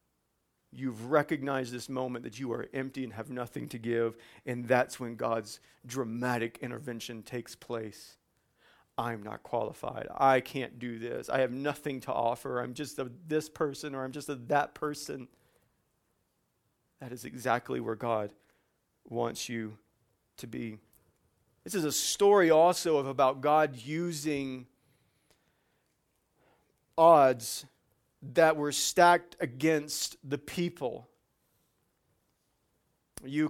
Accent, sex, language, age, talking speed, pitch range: American, male, English, 40-59, 125 wpm, 125-160 Hz